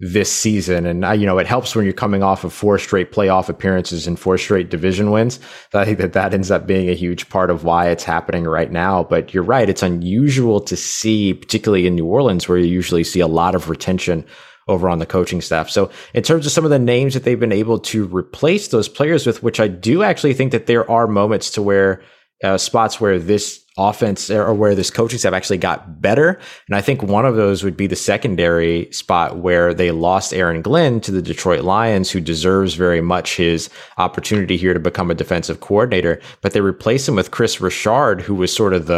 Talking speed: 225 wpm